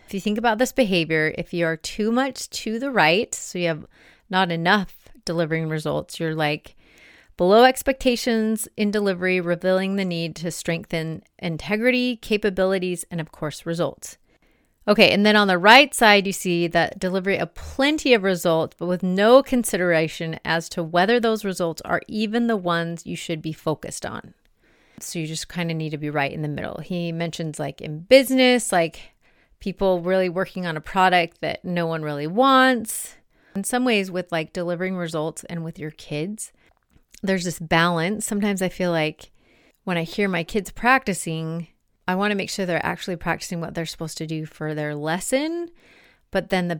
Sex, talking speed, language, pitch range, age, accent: female, 185 wpm, English, 165-210 Hz, 30-49, American